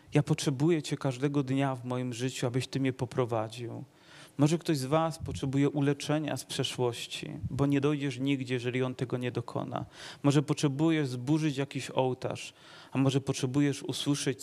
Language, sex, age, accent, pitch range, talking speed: Polish, male, 30-49, native, 125-150 Hz, 160 wpm